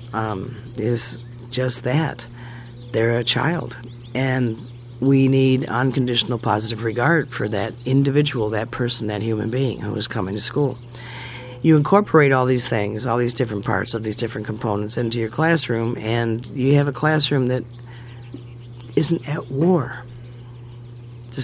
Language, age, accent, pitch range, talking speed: English, 50-69, American, 120-130 Hz, 145 wpm